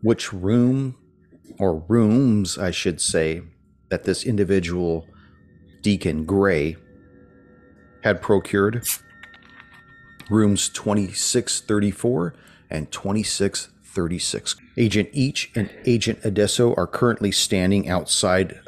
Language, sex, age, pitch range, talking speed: English, male, 40-59, 85-110 Hz, 85 wpm